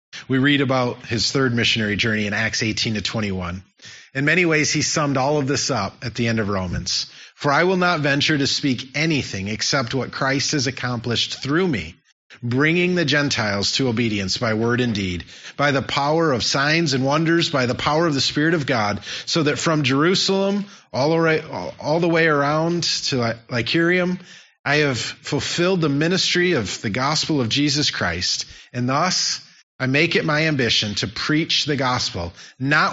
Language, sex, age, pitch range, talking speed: English, male, 30-49, 115-155 Hz, 180 wpm